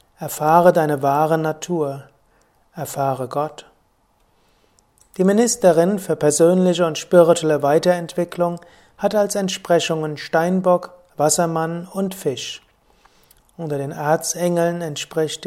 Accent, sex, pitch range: German, male, 145-175 Hz